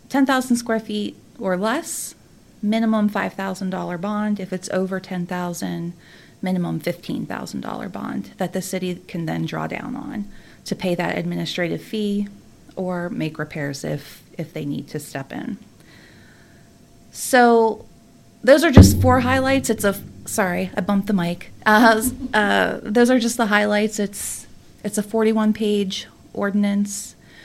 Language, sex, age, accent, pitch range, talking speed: English, female, 30-49, American, 180-215 Hz, 140 wpm